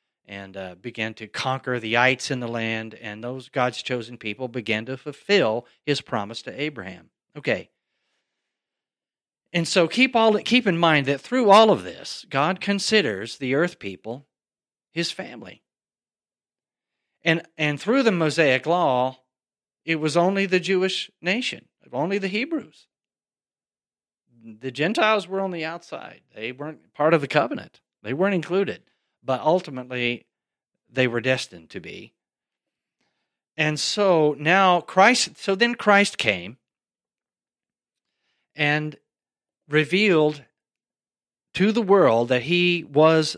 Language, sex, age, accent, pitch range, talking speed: English, male, 40-59, American, 130-195 Hz, 130 wpm